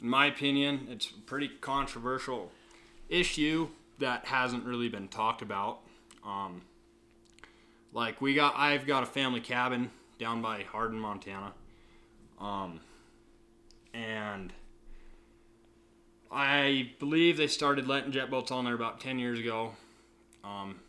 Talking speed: 125 wpm